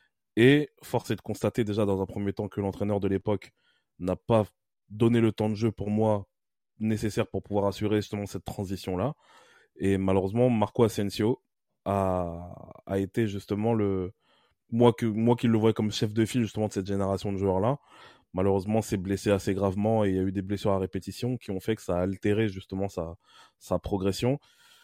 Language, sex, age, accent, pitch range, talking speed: French, male, 20-39, French, 95-115 Hz, 195 wpm